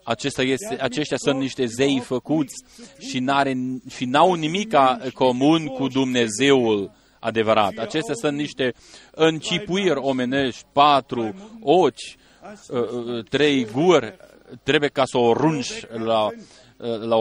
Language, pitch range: Romanian, 125-170 Hz